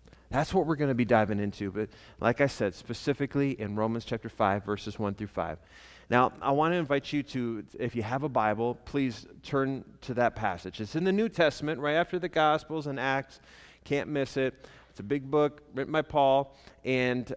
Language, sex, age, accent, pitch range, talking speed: English, male, 30-49, American, 120-150 Hz, 205 wpm